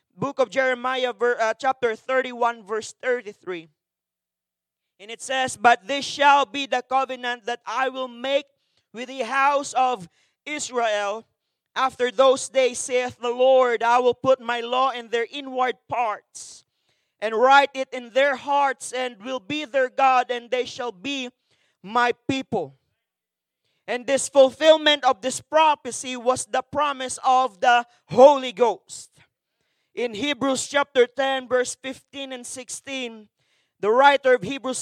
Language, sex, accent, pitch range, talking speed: English, male, Filipino, 235-270 Hz, 140 wpm